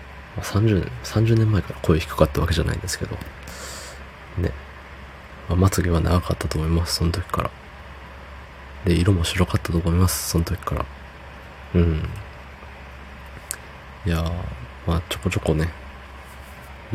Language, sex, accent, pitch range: Japanese, male, native, 70-85 Hz